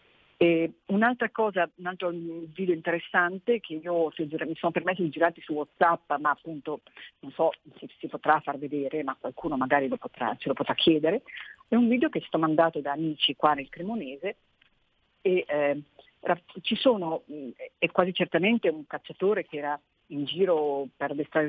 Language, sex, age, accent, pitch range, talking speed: Italian, female, 50-69, native, 155-195 Hz, 170 wpm